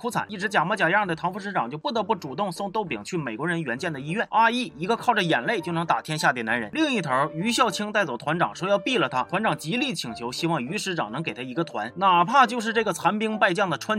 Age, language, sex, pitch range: 30-49, Chinese, male, 165-225 Hz